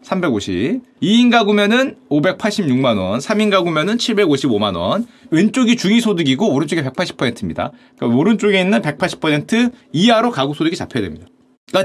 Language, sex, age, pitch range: Korean, male, 30-49, 155-245 Hz